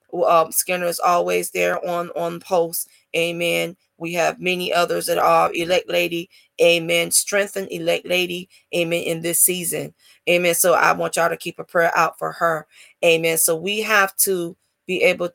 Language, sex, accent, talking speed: English, female, American, 170 wpm